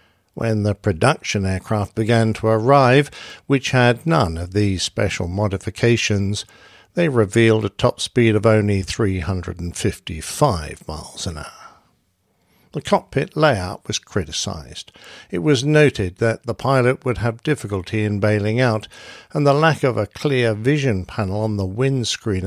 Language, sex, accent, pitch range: English, male, British, 100-130 Hz